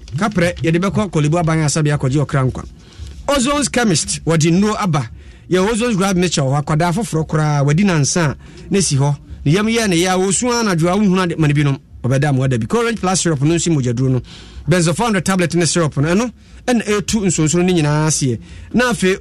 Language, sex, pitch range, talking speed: English, male, 145-185 Hz, 160 wpm